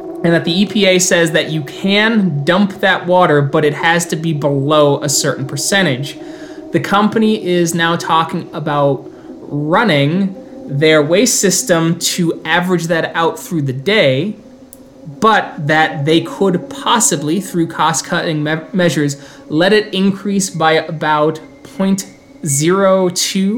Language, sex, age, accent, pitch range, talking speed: English, male, 20-39, American, 155-185 Hz, 130 wpm